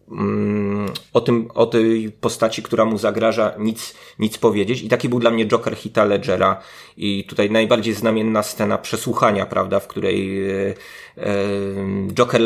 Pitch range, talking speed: 105-130 Hz, 140 wpm